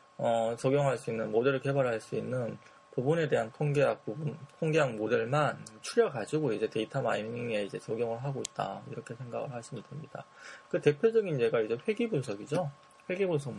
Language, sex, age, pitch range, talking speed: English, male, 20-39, 115-180 Hz, 145 wpm